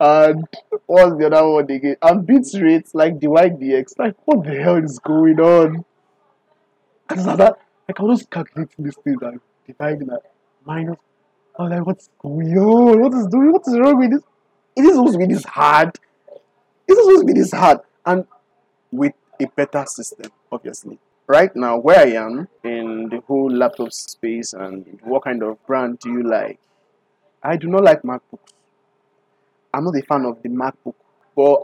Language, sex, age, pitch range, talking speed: English, male, 20-39, 135-200 Hz, 180 wpm